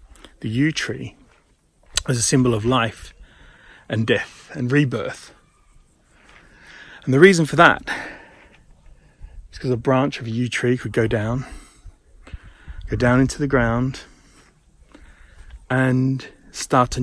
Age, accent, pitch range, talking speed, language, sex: 30-49, British, 115-135 Hz, 125 wpm, English, male